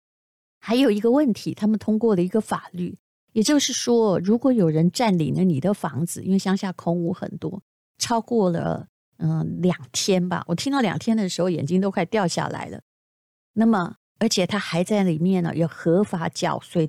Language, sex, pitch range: Chinese, female, 170-225 Hz